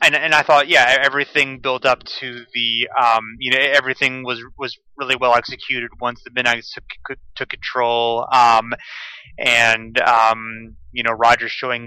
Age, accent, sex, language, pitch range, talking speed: 30-49, American, male, English, 110-125 Hz, 160 wpm